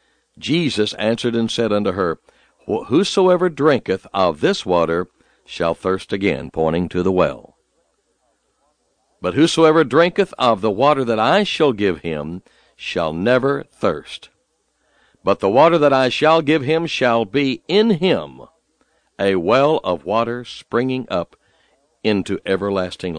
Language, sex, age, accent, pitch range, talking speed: English, male, 60-79, American, 100-155 Hz, 135 wpm